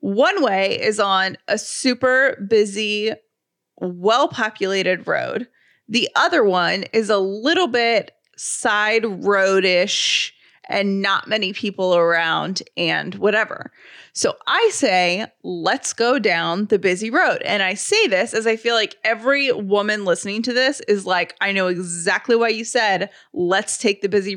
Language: English